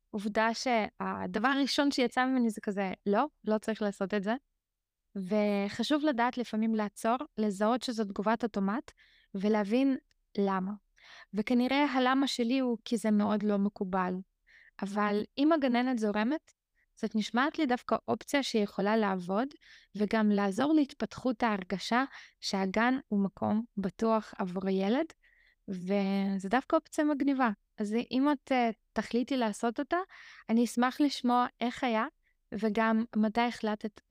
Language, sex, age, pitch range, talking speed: Hebrew, female, 20-39, 210-255 Hz, 125 wpm